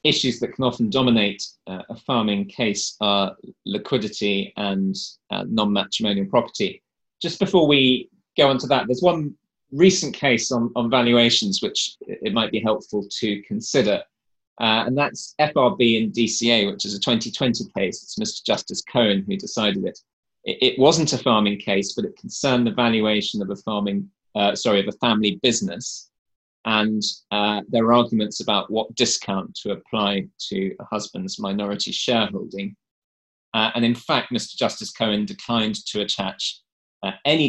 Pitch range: 100-125 Hz